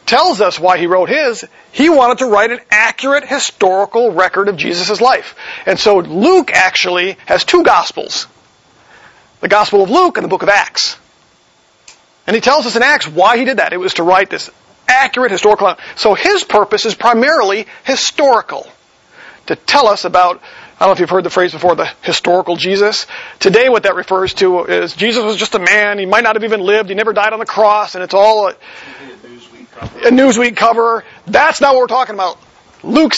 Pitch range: 190-255 Hz